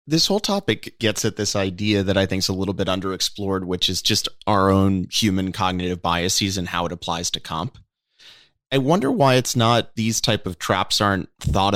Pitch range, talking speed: 95-120 Hz, 205 wpm